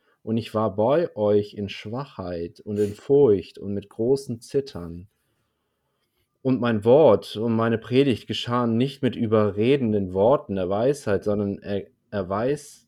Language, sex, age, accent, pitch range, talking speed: German, male, 30-49, German, 110-135 Hz, 145 wpm